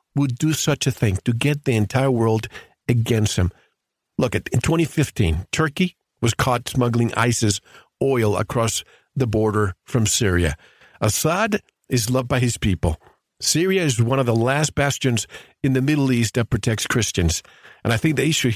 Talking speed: 170 wpm